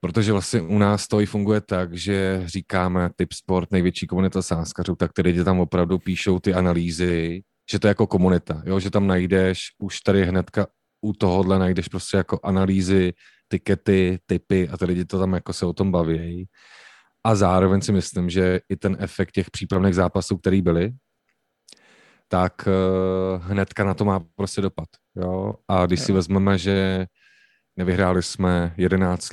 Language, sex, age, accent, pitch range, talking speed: English, male, 30-49, Czech, 90-95 Hz, 165 wpm